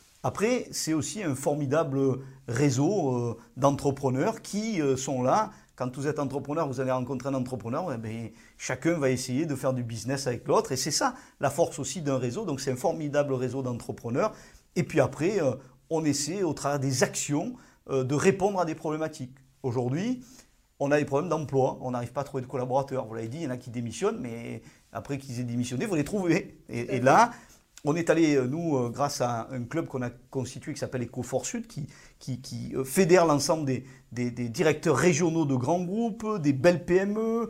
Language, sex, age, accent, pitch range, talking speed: French, male, 40-59, French, 130-165 Hz, 195 wpm